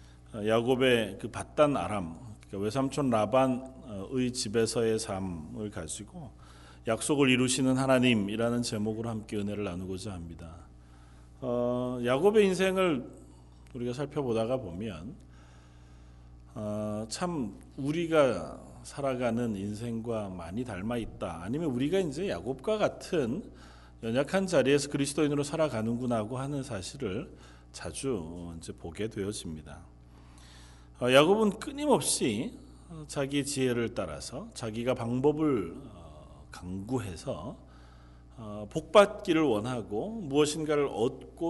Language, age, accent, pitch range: Korean, 40-59, native, 85-140 Hz